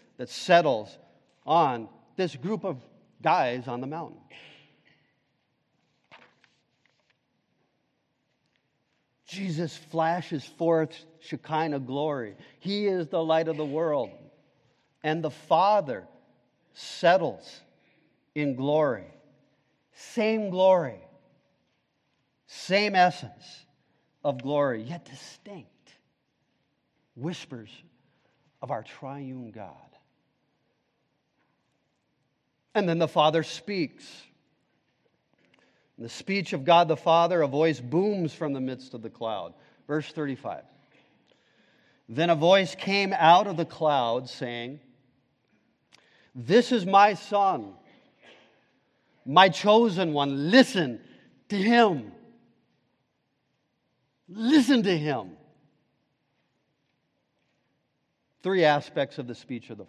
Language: English